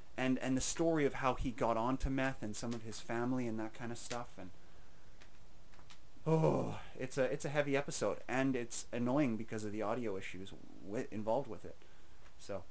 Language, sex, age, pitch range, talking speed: English, male, 30-49, 105-140 Hz, 195 wpm